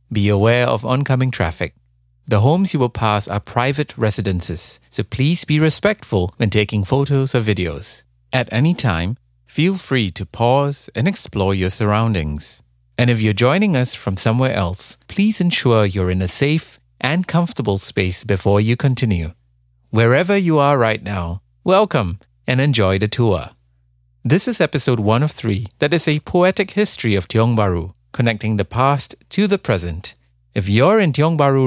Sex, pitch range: male, 95-140 Hz